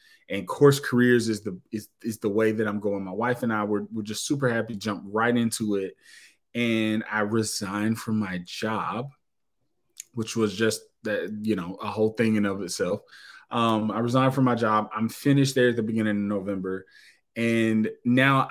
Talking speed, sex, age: 195 wpm, male, 20-39